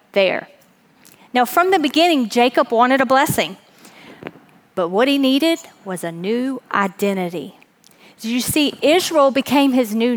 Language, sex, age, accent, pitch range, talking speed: English, female, 40-59, American, 220-285 Hz, 140 wpm